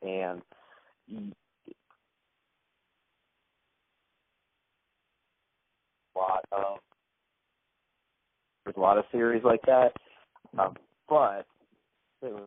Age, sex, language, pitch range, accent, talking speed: 30-49, male, English, 95-110 Hz, American, 65 wpm